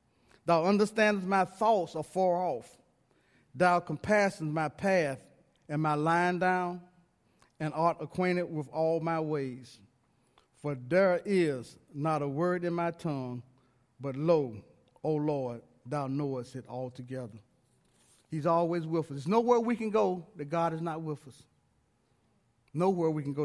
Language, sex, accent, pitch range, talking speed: English, male, American, 125-175 Hz, 150 wpm